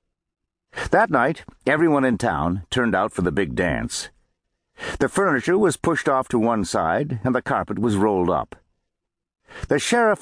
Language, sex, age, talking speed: English, male, 60-79, 160 wpm